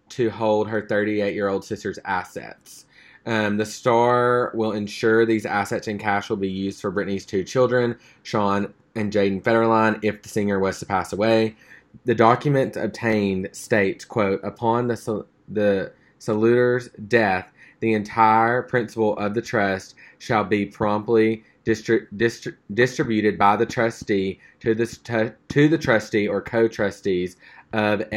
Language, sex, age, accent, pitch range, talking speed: English, male, 20-39, American, 100-115 Hz, 145 wpm